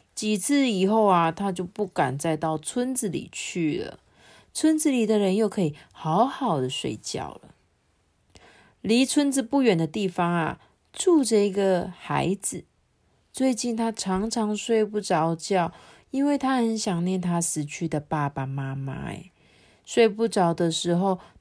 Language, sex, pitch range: Chinese, female, 160-235 Hz